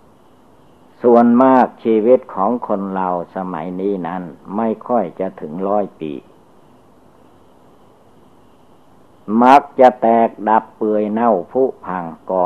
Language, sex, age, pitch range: Thai, male, 60-79, 90-120 Hz